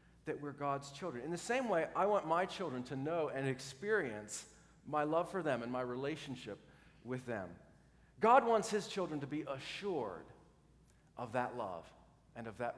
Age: 40-59